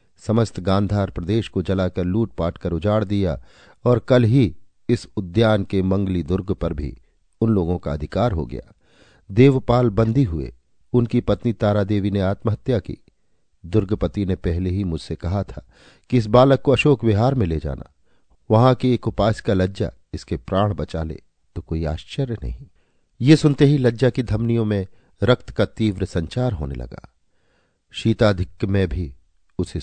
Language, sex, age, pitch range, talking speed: Hindi, male, 50-69, 85-110 Hz, 165 wpm